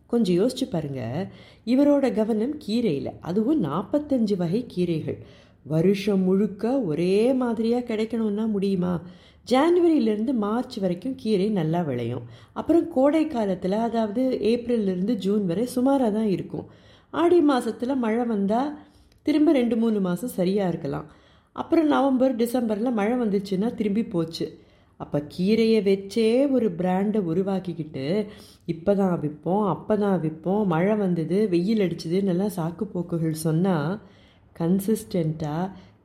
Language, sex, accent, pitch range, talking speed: Tamil, female, native, 170-230 Hz, 115 wpm